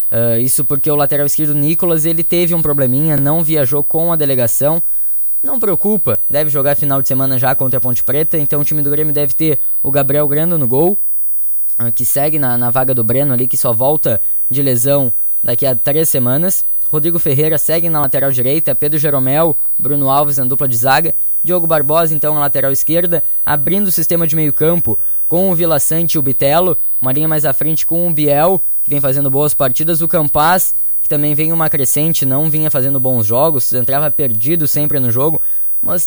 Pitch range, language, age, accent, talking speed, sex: 130-155 Hz, Portuguese, 10-29, Brazilian, 205 wpm, female